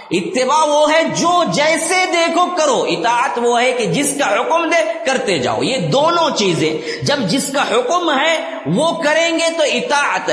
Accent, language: Indian, English